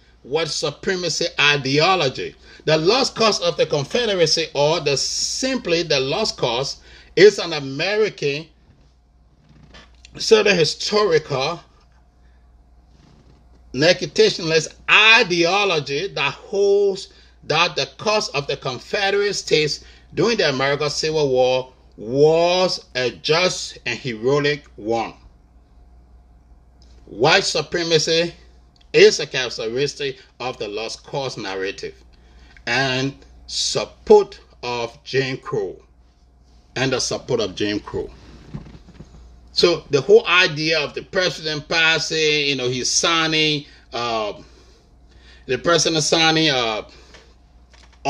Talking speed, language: 100 wpm, English